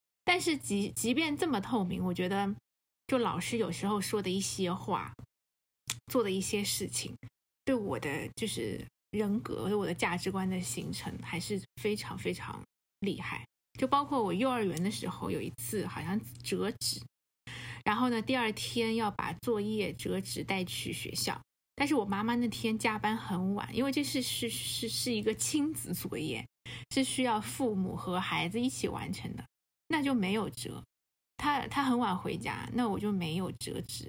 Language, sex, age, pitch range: Chinese, female, 20-39, 190-240 Hz